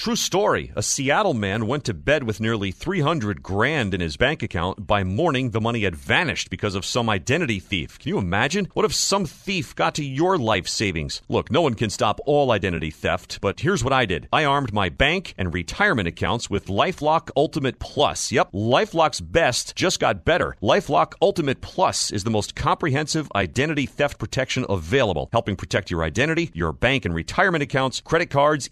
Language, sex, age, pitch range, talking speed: English, male, 40-59, 100-150 Hz, 190 wpm